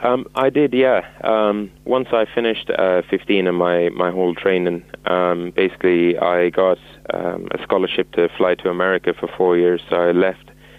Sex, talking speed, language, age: male, 180 wpm, English, 20-39